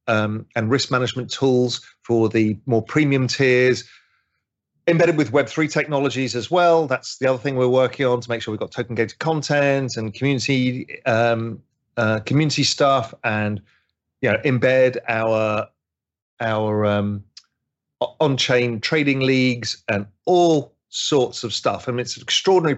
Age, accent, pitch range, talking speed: 40-59, British, 115-150 Hz, 150 wpm